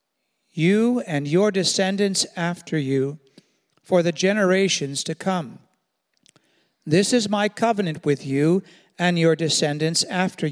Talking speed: 120 wpm